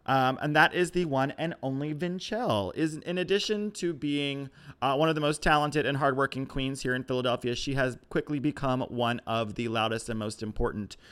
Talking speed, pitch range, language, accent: 200 wpm, 115-140 Hz, English, American